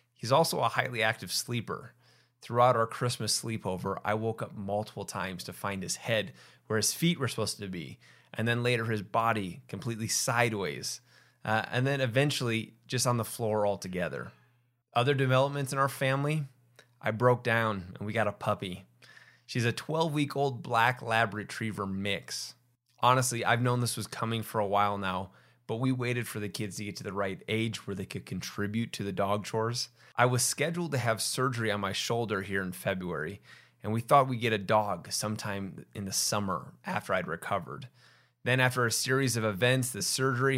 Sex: male